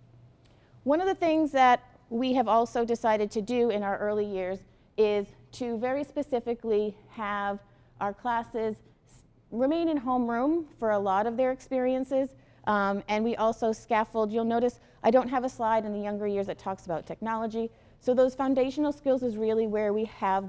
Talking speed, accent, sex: 175 wpm, American, female